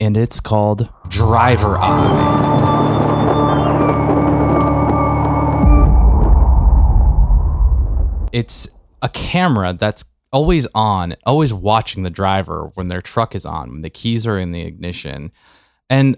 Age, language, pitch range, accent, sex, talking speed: 20-39, English, 90-120 Hz, American, male, 105 wpm